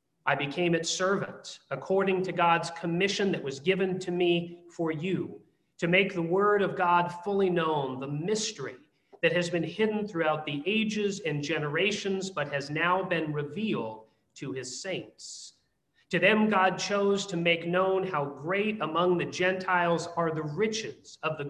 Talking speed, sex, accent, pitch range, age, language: 165 wpm, male, American, 155-190 Hz, 40-59, English